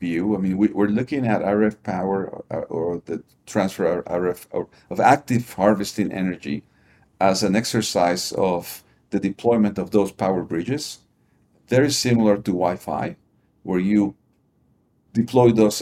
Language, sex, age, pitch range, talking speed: English, male, 50-69, 95-115 Hz, 125 wpm